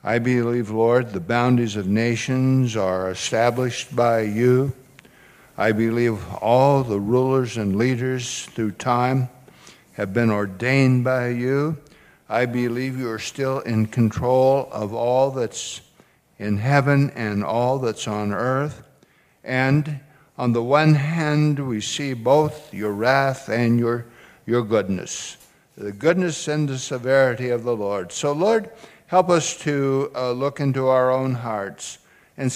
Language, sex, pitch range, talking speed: English, male, 115-145 Hz, 140 wpm